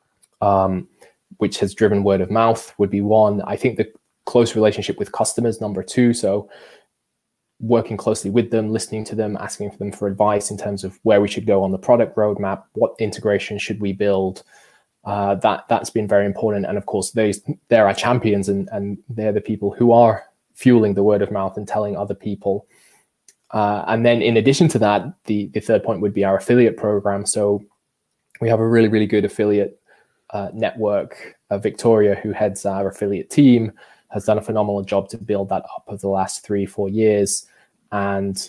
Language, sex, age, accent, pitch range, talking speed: Finnish, male, 20-39, British, 100-110 Hz, 195 wpm